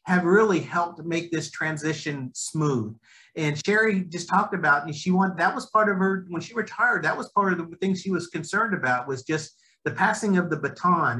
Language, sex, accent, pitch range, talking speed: English, male, American, 140-180 Hz, 215 wpm